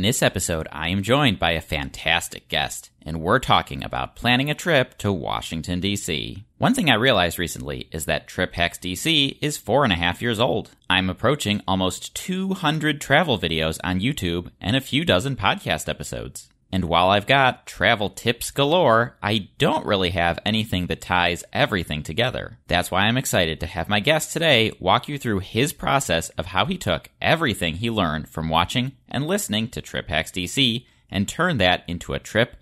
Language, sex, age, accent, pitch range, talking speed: English, male, 30-49, American, 85-130 Hz, 185 wpm